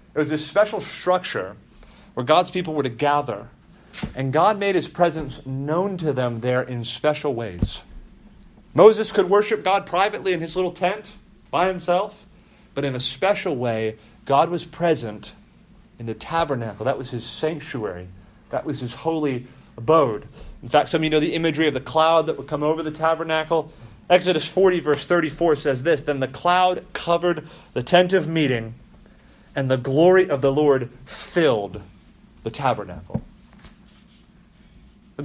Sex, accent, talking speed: male, American, 160 wpm